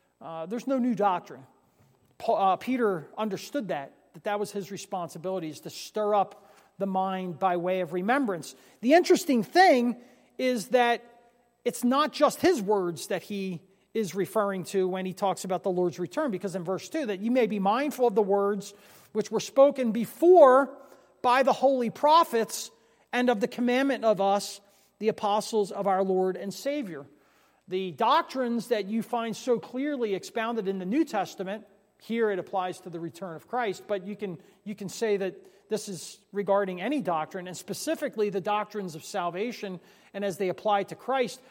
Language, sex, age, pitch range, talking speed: English, male, 40-59, 195-250 Hz, 180 wpm